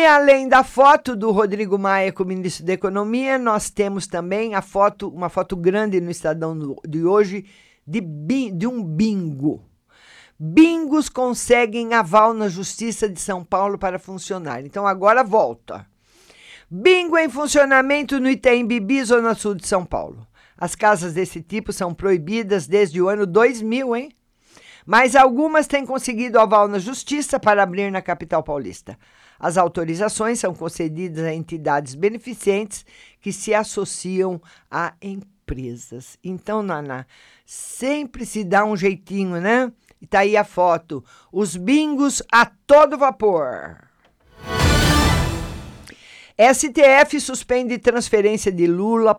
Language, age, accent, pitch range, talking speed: Portuguese, 50-69, Brazilian, 185-240 Hz, 135 wpm